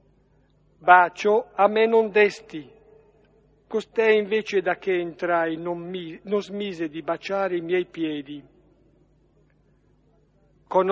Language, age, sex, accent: Italian, 60-79, male, native